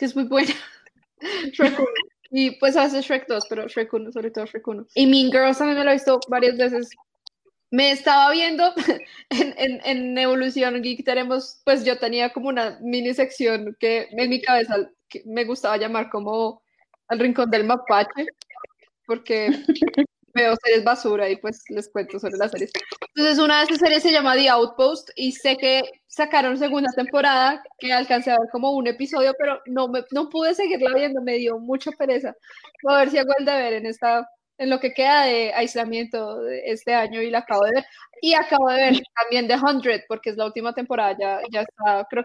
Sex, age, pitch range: female, 10-29, 235-290 Hz